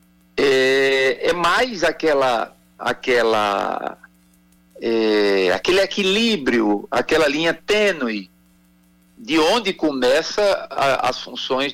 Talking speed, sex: 85 wpm, male